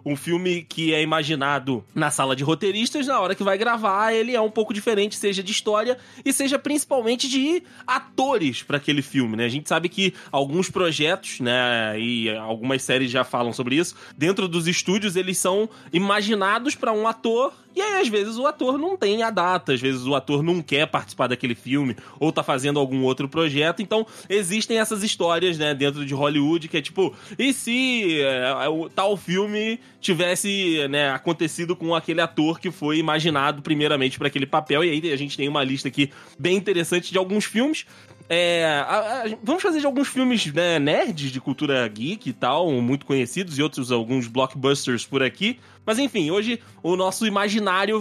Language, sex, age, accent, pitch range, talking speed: Portuguese, male, 20-39, Brazilian, 140-210 Hz, 195 wpm